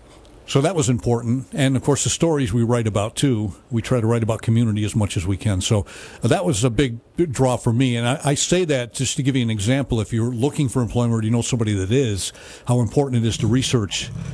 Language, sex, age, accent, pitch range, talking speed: English, male, 50-69, American, 110-135 Hz, 255 wpm